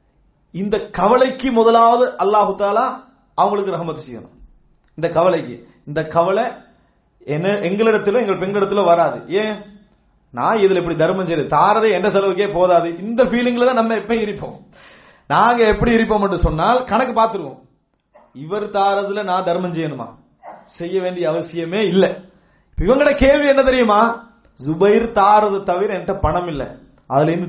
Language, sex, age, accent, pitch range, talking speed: English, male, 30-49, Indian, 180-260 Hz, 70 wpm